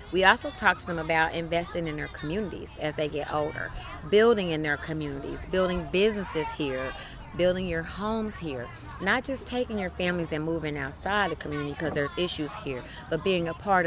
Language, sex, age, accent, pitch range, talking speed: English, female, 30-49, American, 145-195 Hz, 185 wpm